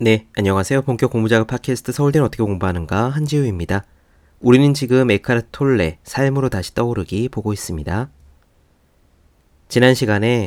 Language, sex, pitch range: Korean, male, 90-125 Hz